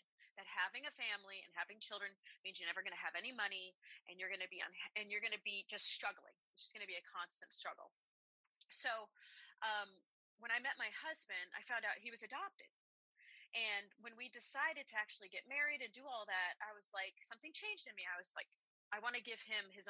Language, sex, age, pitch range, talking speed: English, female, 30-49, 195-245 Hz, 230 wpm